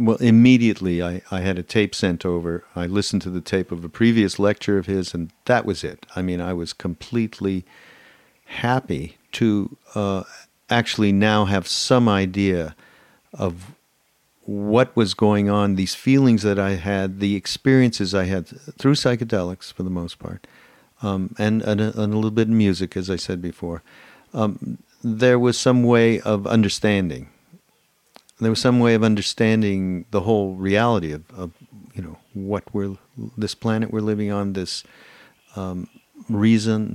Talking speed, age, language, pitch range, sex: 160 wpm, 50-69, English, 95-115 Hz, male